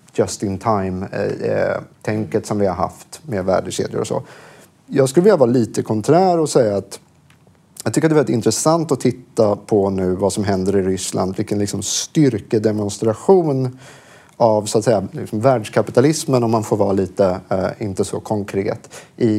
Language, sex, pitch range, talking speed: Swedish, male, 100-135 Hz, 165 wpm